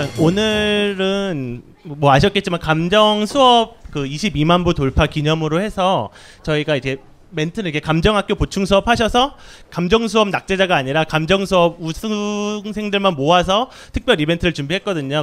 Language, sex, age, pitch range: Korean, male, 30-49, 155-210 Hz